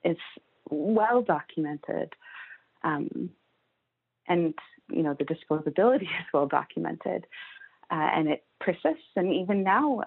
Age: 30-49